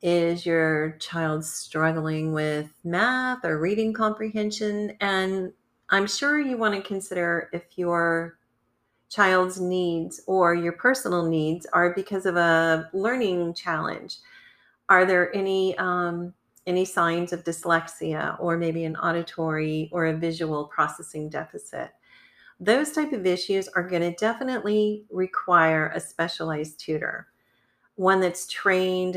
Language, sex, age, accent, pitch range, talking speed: English, female, 40-59, American, 160-190 Hz, 130 wpm